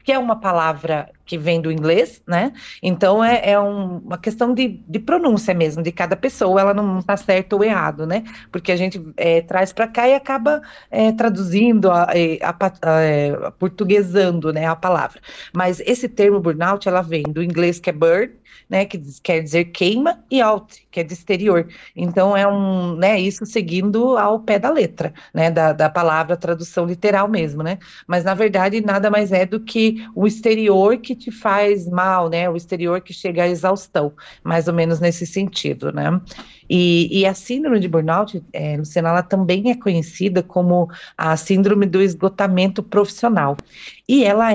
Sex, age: female, 40-59